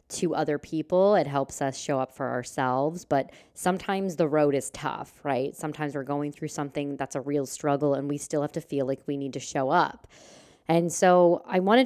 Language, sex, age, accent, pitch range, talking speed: English, female, 20-39, American, 140-160 Hz, 215 wpm